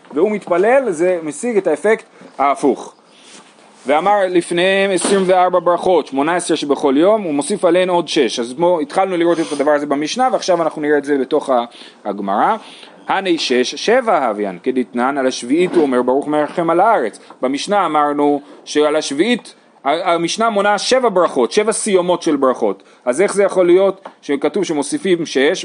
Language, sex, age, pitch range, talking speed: Hebrew, male, 30-49, 145-210 Hz, 160 wpm